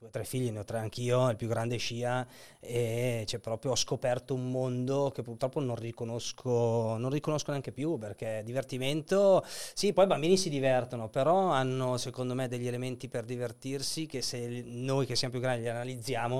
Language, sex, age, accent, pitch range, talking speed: Italian, male, 30-49, native, 115-135 Hz, 185 wpm